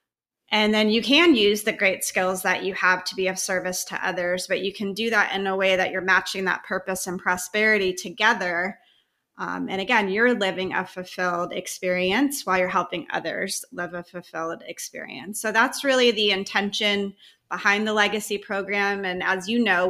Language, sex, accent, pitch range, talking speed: English, female, American, 185-215 Hz, 185 wpm